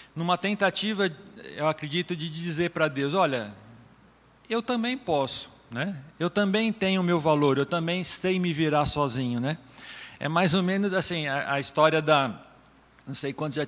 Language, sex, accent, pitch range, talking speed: Portuguese, male, Brazilian, 135-180 Hz, 170 wpm